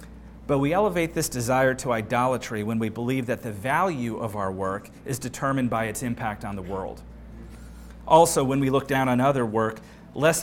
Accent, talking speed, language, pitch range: American, 190 wpm, English, 110-140 Hz